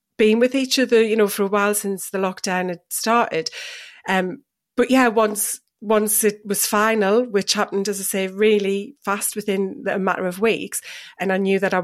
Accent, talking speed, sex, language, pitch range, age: British, 200 wpm, female, English, 195-230 Hz, 30-49